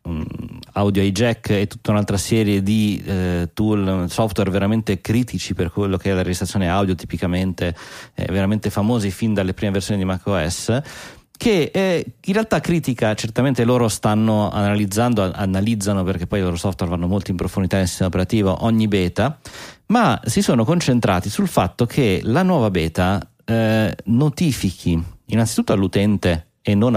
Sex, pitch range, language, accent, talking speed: male, 95-120 Hz, Italian, native, 150 wpm